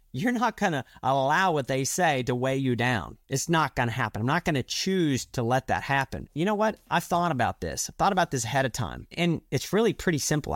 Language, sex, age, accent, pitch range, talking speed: English, male, 30-49, American, 120-170 Hz, 255 wpm